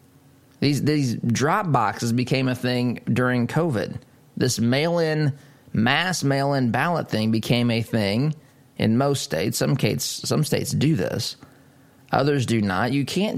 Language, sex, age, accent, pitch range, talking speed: English, male, 30-49, American, 110-135 Hz, 140 wpm